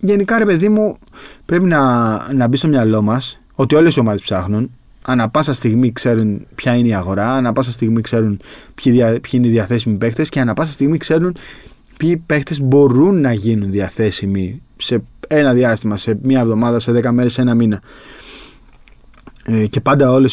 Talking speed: 175 wpm